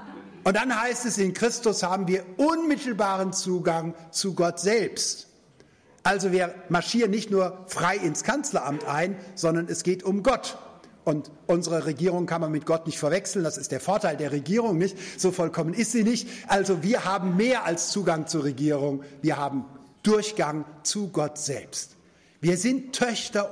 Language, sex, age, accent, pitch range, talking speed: German, male, 60-79, German, 170-215 Hz, 165 wpm